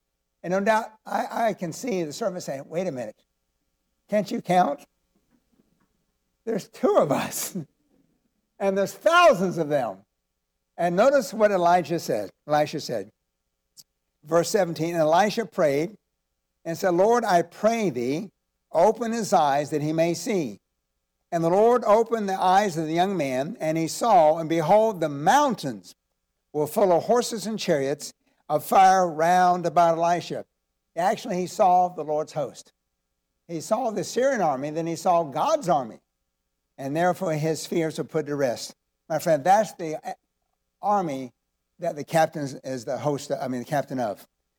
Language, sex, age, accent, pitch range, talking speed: English, male, 60-79, American, 130-200 Hz, 155 wpm